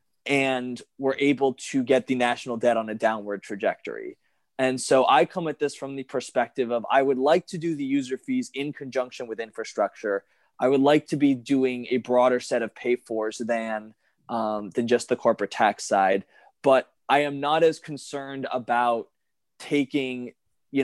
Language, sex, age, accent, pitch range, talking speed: English, male, 20-39, American, 115-135 Hz, 180 wpm